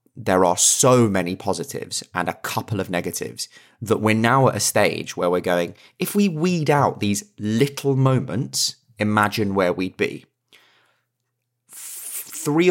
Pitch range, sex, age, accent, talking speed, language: 95-120 Hz, male, 20-39, British, 145 wpm, English